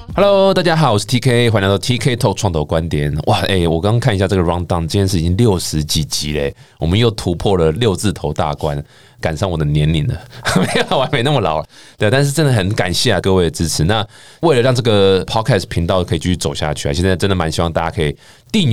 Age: 20-39